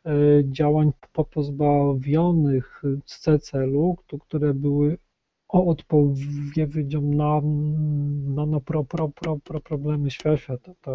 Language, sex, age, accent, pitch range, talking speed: Polish, male, 40-59, native, 140-155 Hz, 105 wpm